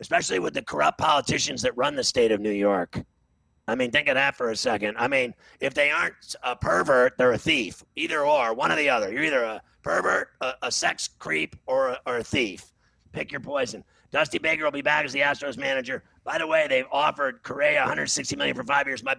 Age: 30-49